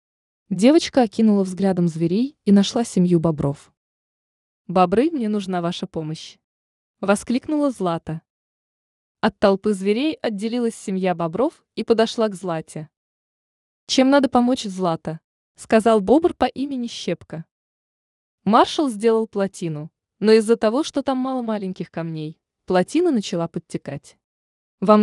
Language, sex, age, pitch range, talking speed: Russian, female, 20-39, 170-240 Hz, 115 wpm